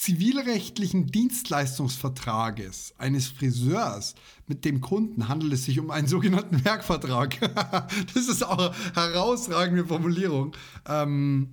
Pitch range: 130-190 Hz